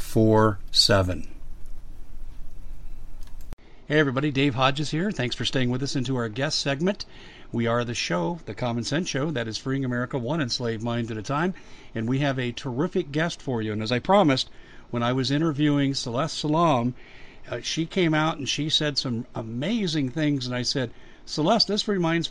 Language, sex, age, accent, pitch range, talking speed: English, male, 50-69, American, 120-150 Hz, 175 wpm